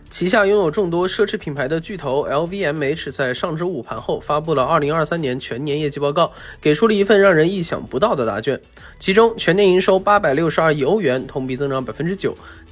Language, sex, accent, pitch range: Chinese, male, native, 145-200 Hz